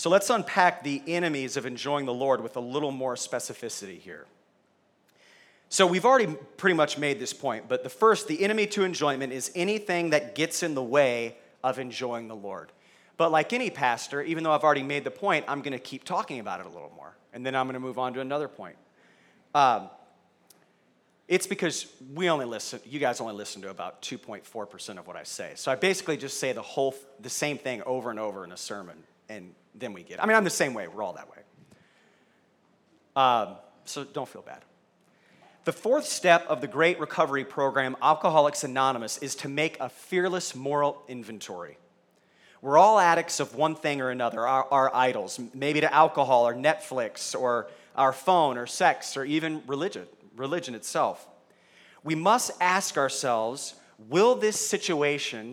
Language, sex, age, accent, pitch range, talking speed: English, male, 40-59, American, 130-165 Hz, 190 wpm